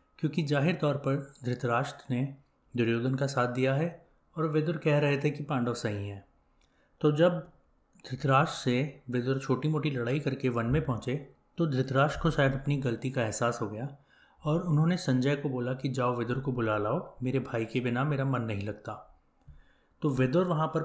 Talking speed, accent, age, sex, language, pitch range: 155 wpm, Indian, 30-49, male, English, 120-150 Hz